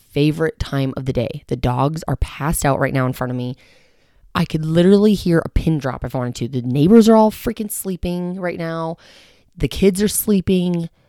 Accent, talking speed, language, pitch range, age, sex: American, 210 wpm, English, 135-180 Hz, 20-39, female